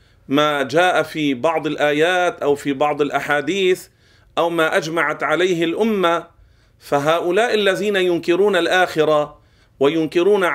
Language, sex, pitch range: Arabic, male, 155-200 Hz